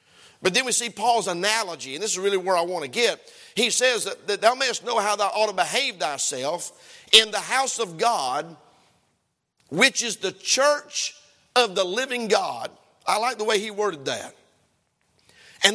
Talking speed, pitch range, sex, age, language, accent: 185 wpm, 205-275 Hz, male, 50-69, English, American